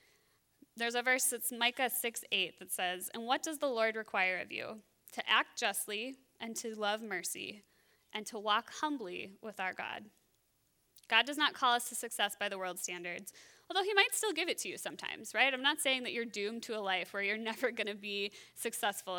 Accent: American